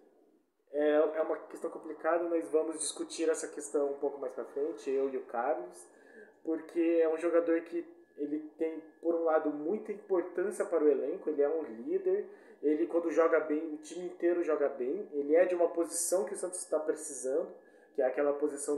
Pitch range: 145-205 Hz